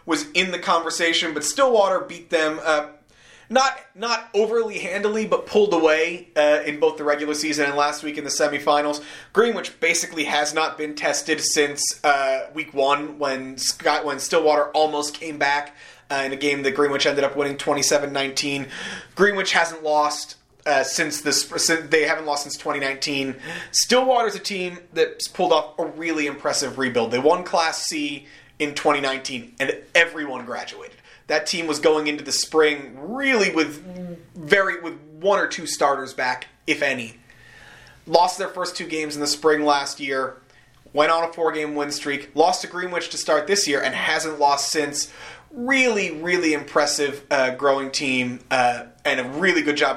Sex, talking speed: male, 175 wpm